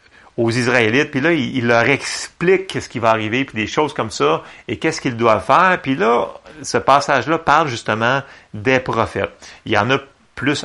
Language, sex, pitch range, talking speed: French, male, 110-170 Hz, 190 wpm